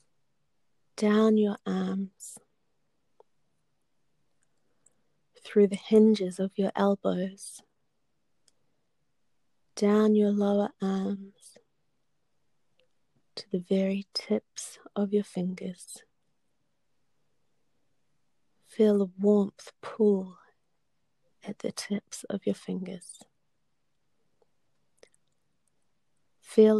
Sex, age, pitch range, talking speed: female, 30-49, 190-210 Hz, 70 wpm